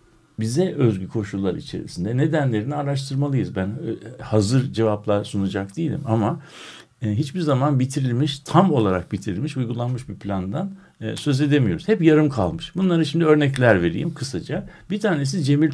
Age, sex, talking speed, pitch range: 60-79, male, 130 wpm, 95-145 Hz